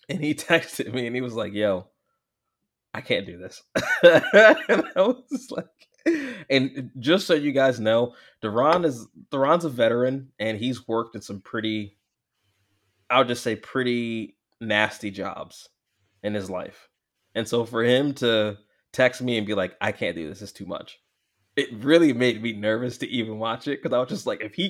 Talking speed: 190 wpm